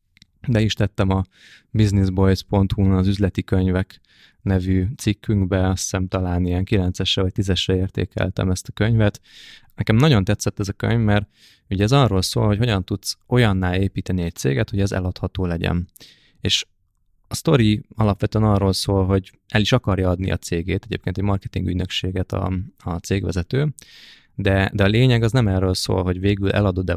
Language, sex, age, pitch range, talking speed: Hungarian, male, 20-39, 90-110 Hz, 165 wpm